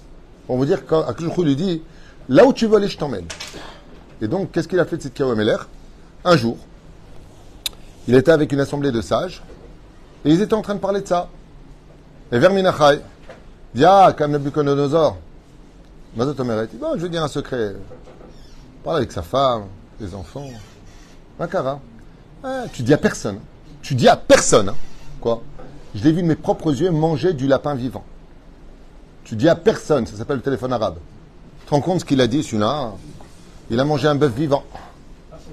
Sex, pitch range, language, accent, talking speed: male, 120-155 Hz, French, French, 180 wpm